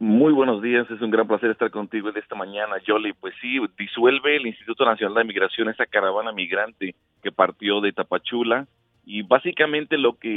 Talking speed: 180 wpm